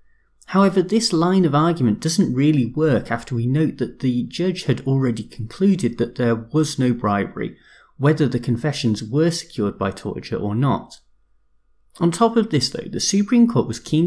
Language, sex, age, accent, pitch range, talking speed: English, male, 30-49, British, 115-165 Hz, 175 wpm